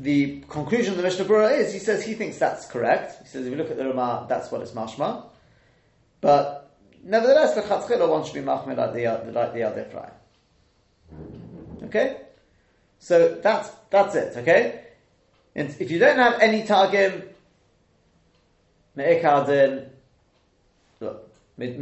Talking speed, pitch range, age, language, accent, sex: 145 wpm, 125-180 Hz, 30-49, English, British, male